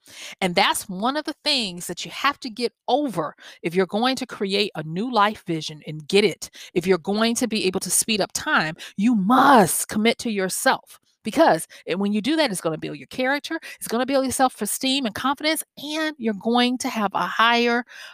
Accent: American